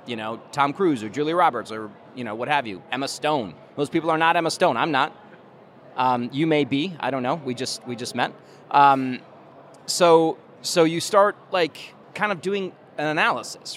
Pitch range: 125-155 Hz